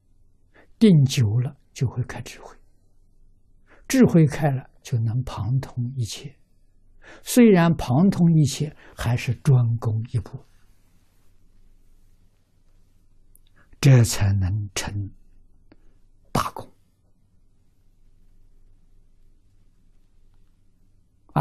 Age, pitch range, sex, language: 60-79, 95-120 Hz, male, Chinese